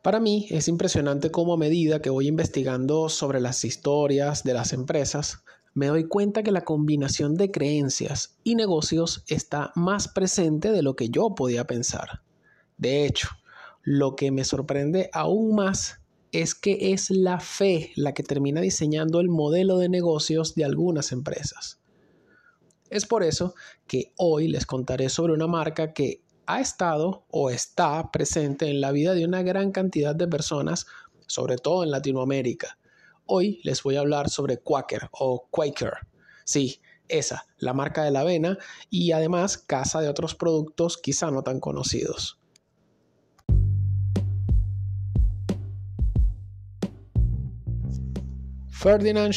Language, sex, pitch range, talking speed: Spanish, male, 130-170 Hz, 140 wpm